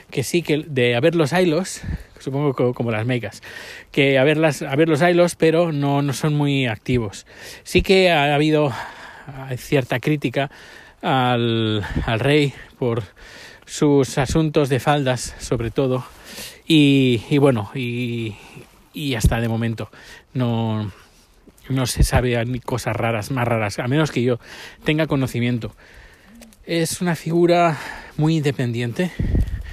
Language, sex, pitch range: Spanish, male, 115-145 Hz